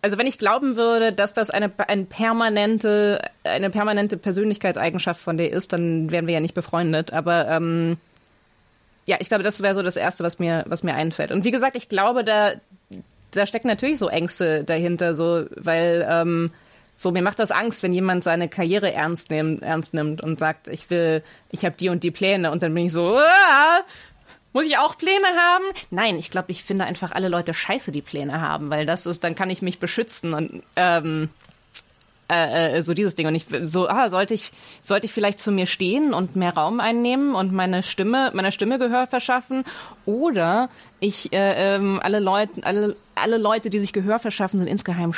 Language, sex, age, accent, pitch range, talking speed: German, female, 20-39, German, 170-215 Hz, 200 wpm